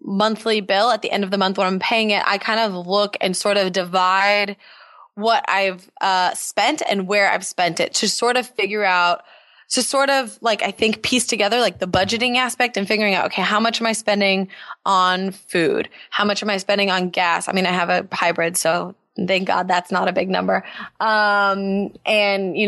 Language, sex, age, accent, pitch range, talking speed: English, female, 20-39, American, 190-230 Hz, 215 wpm